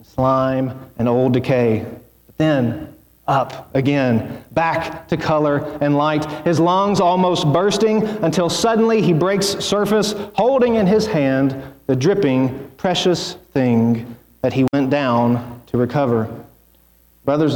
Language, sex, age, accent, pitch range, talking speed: English, male, 40-59, American, 130-160 Hz, 125 wpm